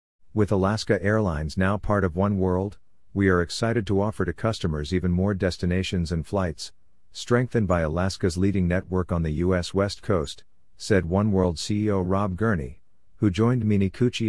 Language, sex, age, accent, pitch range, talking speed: English, male, 50-69, American, 85-100 Hz, 165 wpm